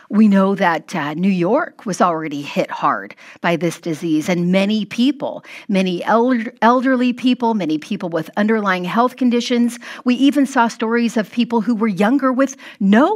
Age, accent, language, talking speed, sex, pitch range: 40-59, American, English, 165 wpm, female, 195-265 Hz